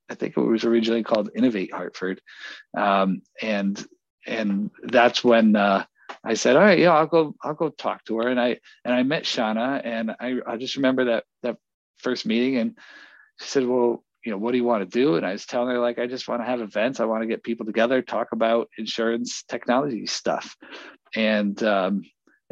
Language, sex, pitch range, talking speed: English, male, 110-125 Hz, 210 wpm